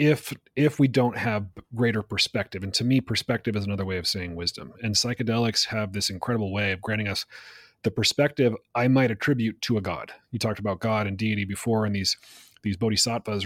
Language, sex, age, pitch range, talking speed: English, male, 30-49, 105-125 Hz, 200 wpm